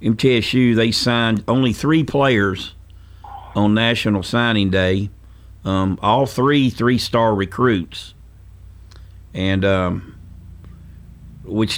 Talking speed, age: 95 wpm, 50-69